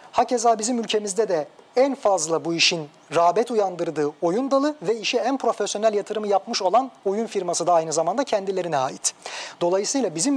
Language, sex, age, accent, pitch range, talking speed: Turkish, male, 40-59, native, 165-220 Hz, 160 wpm